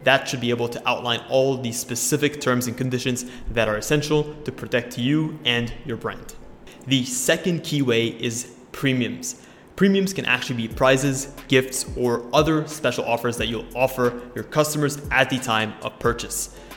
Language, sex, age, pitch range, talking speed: English, male, 20-39, 120-140 Hz, 170 wpm